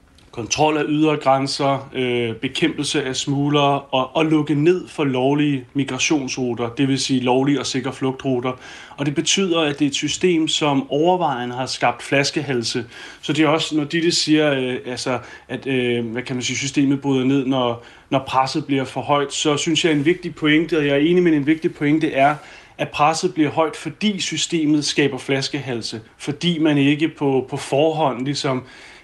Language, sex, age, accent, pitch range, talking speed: Danish, male, 30-49, native, 130-155 Hz, 185 wpm